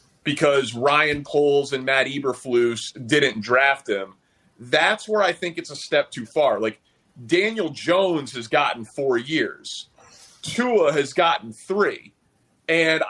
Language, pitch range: English, 130-175 Hz